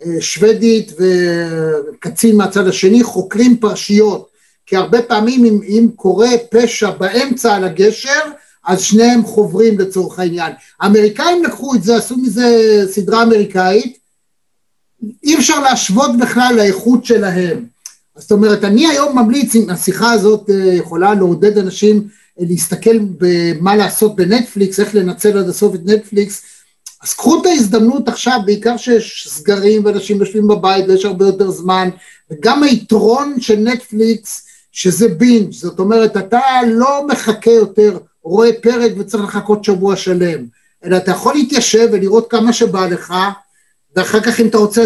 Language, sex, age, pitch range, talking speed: Hebrew, male, 60-79, 195-235 Hz, 135 wpm